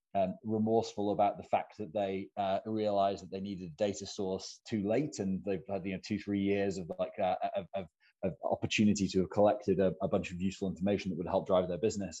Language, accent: English, British